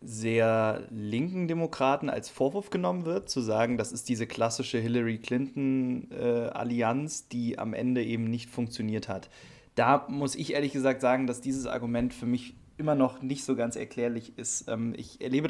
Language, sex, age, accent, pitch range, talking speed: German, male, 30-49, German, 115-135 Hz, 165 wpm